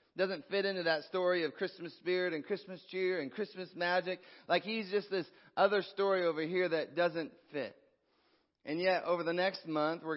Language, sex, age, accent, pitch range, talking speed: English, male, 30-49, American, 150-205 Hz, 195 wpm